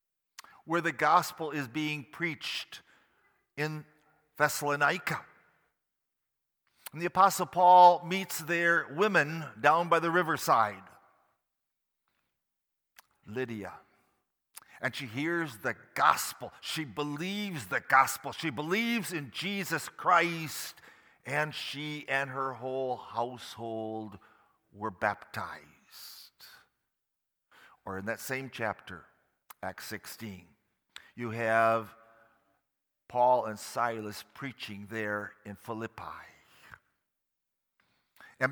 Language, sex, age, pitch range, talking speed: English, male, 50-69, 115-165 Hz, 90 wpm